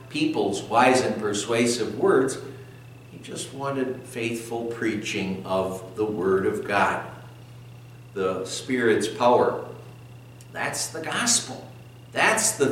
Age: 60-79